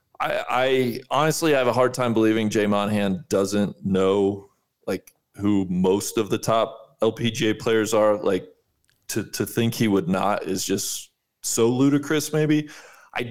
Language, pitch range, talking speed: English, 100-125 Hz, 160 wpm